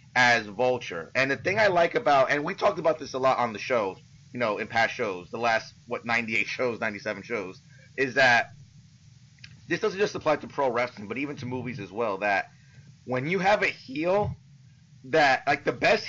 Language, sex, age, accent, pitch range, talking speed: English, male, 30-49, American, 125-150 Hz, 205 wpm